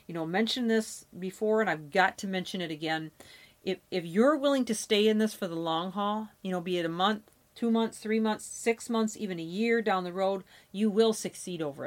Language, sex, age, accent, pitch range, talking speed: English, female, 40-59, American, 180-230 Hz, 235 wpm